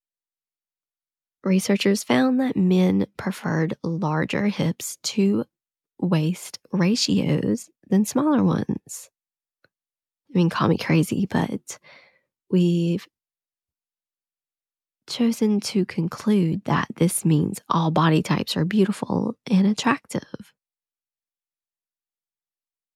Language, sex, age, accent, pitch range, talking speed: English, female, 20-39, American, 170-210 Hz, 85 wpm